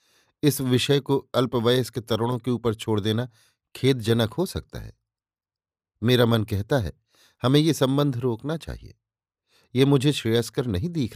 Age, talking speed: 50-69, 150 wpm